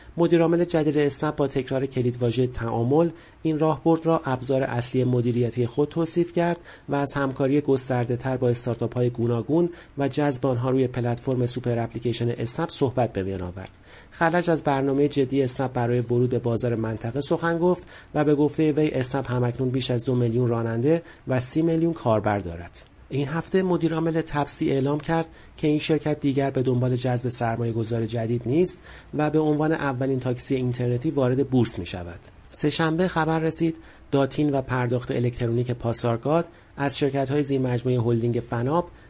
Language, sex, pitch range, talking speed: Persian, male, 120-150 Hz, 160 wpm